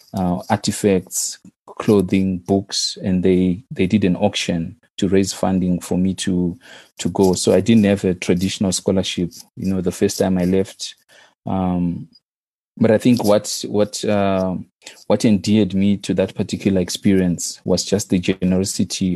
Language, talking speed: English, 155 wpm